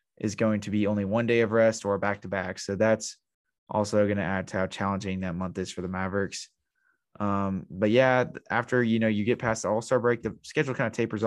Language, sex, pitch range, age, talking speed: English, male, 100-110 Hz, 20-39, 240 wpm